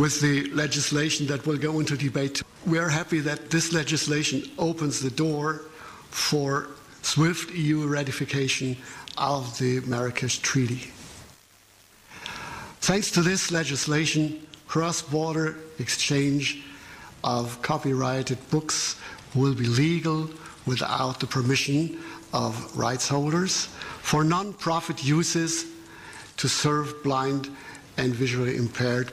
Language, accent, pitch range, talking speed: English, German, 140-165 Hz, 105 wpm